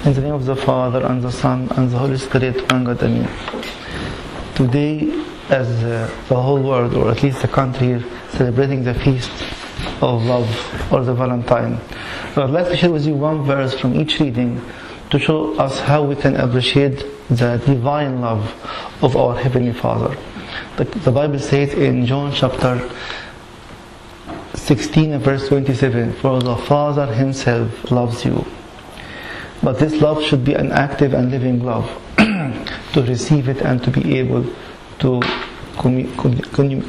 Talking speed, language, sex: 150 wpm, English, male